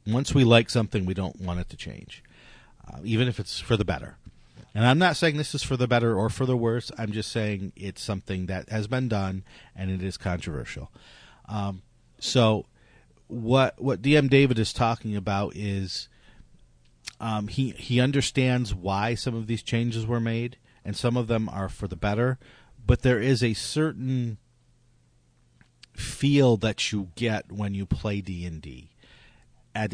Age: 40-59